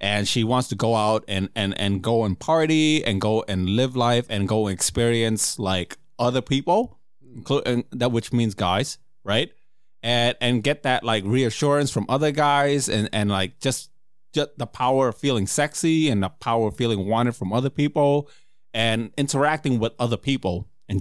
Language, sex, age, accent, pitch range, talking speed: English, male, 30-49, American, 110-150 Hz, 175 wpm